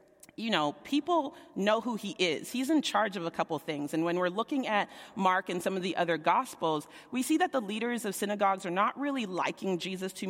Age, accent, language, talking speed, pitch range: 30-49, American, English, 225 wpm, 165-220 Hz